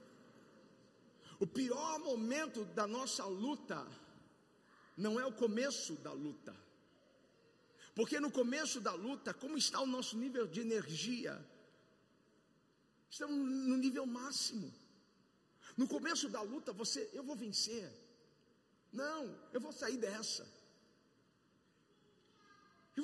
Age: 50-69